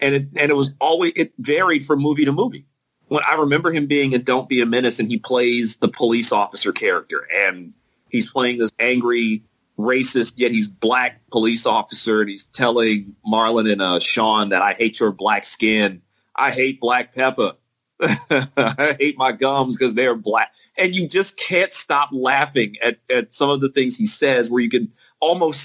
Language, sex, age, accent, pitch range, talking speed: English, male, 40-59, American, 120-150 Hz, 190 wpm